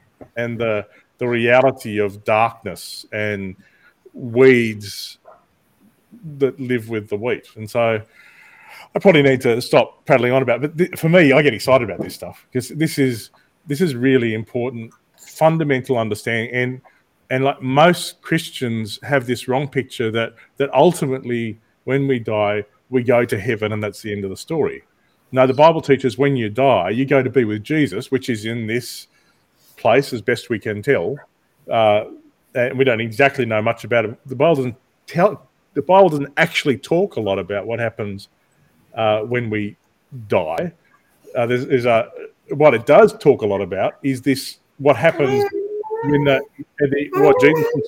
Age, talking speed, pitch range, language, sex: 30-49, 175 wpm, 115-140 Hz, English, male